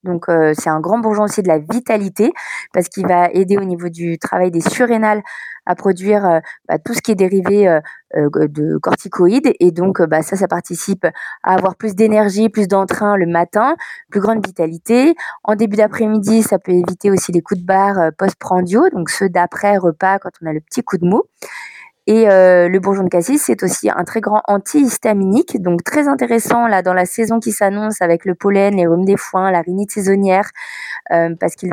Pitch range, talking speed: 180-220 Hz, 205 wpm